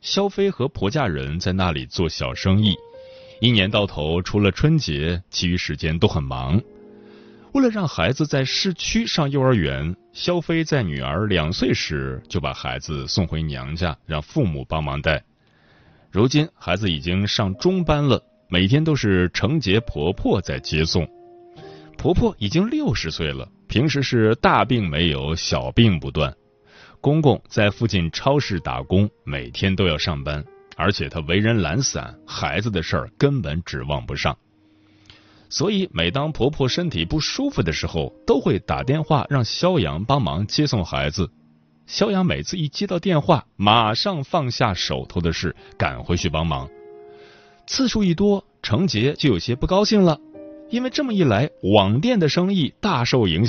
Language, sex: Chinese, male